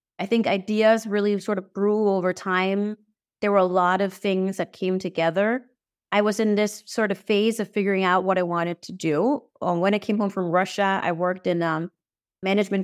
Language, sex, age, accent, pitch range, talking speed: English, female, 30-49, American, 180-210 Hz, 205 wpm